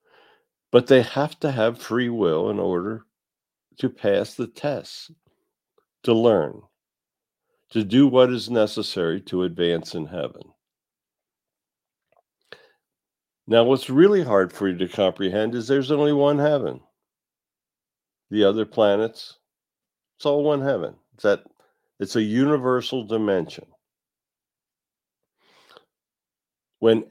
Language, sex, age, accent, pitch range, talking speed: English, male, 50-69, American, 100-135 Hz, 110 wpm